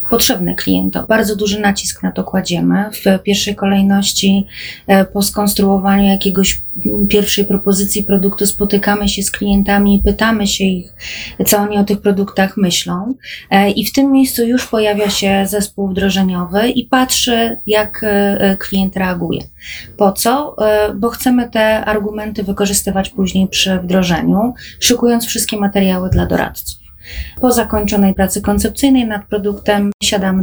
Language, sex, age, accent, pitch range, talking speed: Polish, female, 20-39, native, 190-220 Hz, 130 wpm